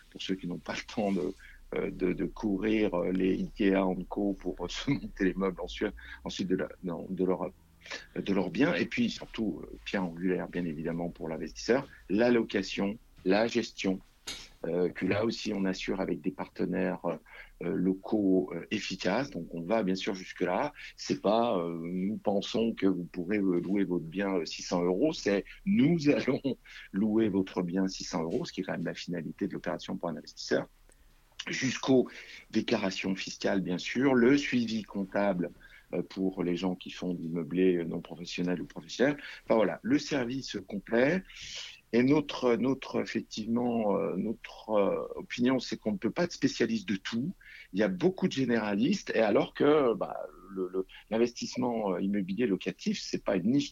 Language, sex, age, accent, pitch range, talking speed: French, male, 50-69, French, 90-115 Hz, 175 wpm